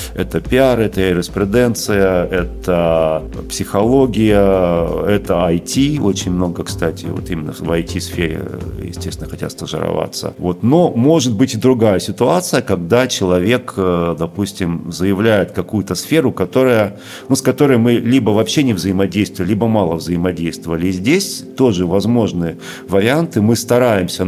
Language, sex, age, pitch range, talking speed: Russian, male, 40-59, 90-115 Hz, 125 wpm